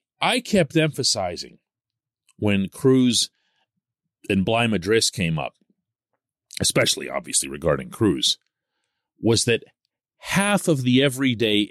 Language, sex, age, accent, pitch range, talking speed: English, male, 40-59, American, 110-155 Hz, 105 wpm